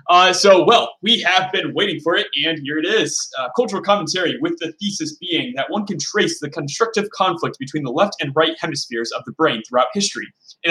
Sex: male